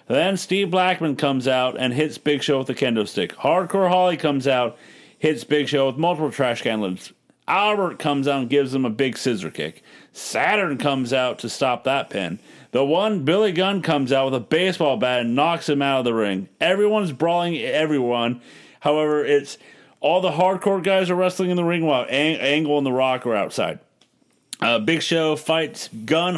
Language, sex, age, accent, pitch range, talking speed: English, male, 40-59, American, 140-170 Hz, 195 wpm